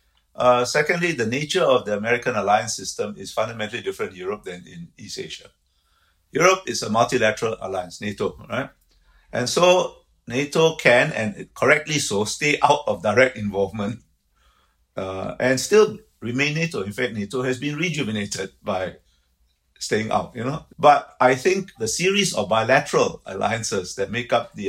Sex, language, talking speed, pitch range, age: male, English, 160 wpm, 105-145 Hz, 50-69